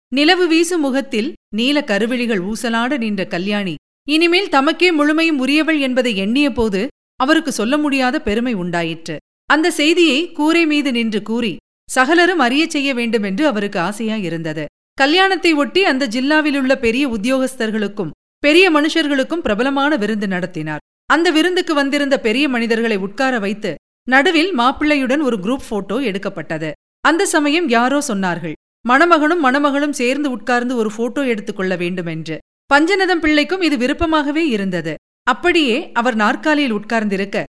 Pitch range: 210-300 Hz